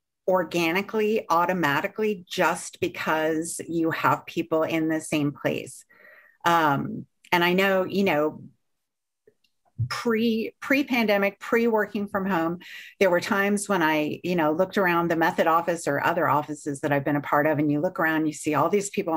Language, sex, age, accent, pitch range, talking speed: English, female, 50-69, American, 155-205 Hz, 170 wpm